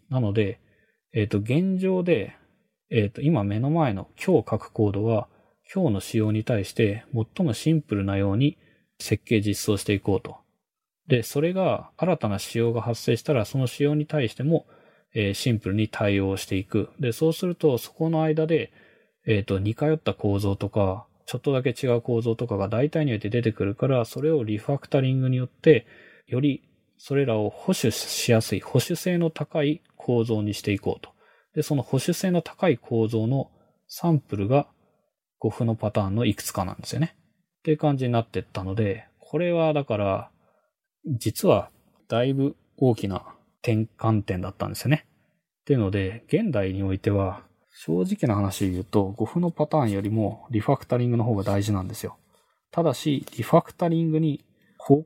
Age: 20-39